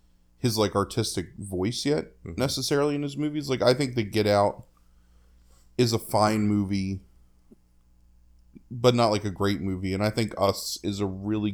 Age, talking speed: 20-39, 165 wpm